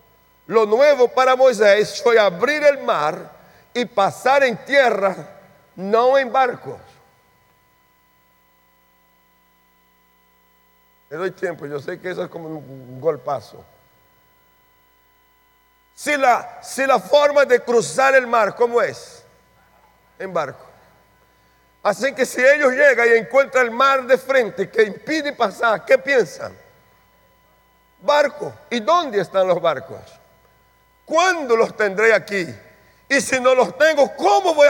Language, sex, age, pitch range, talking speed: Spanish, male, 50-69, 175-275 Hz, 125 wpm